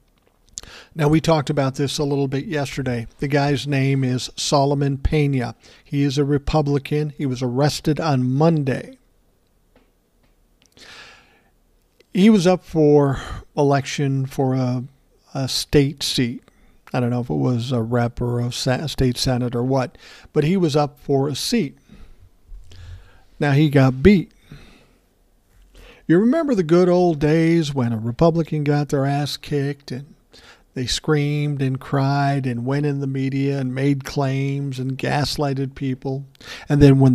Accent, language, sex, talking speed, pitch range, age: American, English, male, 145 wpm, 130-150 Hz, 50-69